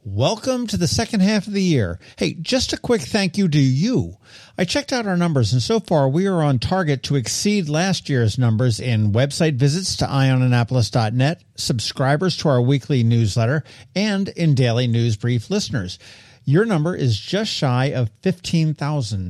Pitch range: 120-175 Hz